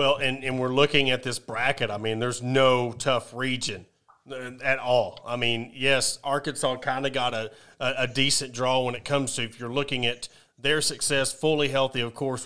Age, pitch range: 30-49, 120-145 Hz